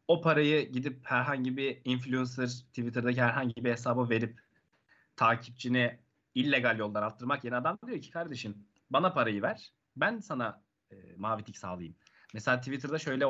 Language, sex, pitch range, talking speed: Turkish, male, 125-165 Hz, 145 wpm